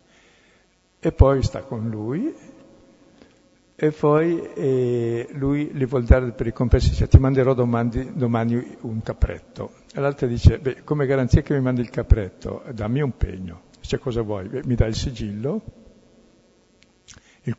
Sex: male